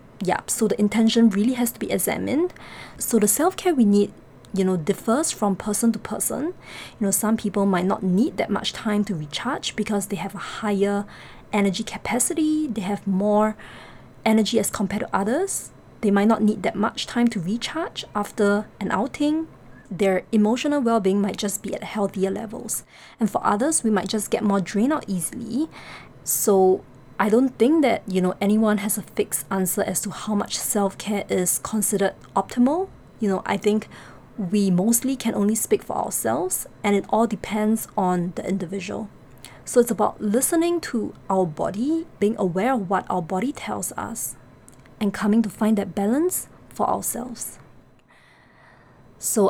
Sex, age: female, 20-39